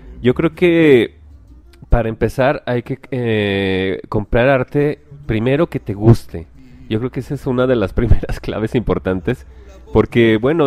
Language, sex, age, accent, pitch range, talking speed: Spanish, male, 30-49, Mexican, 100-130 Hz, 150 wpm